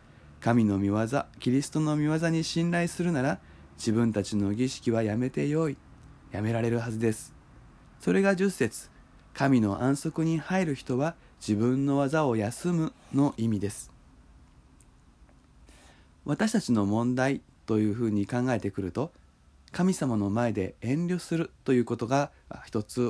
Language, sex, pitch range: Japanese, male, 100-145 Hz